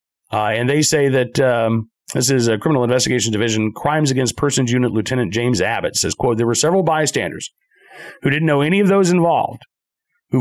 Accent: American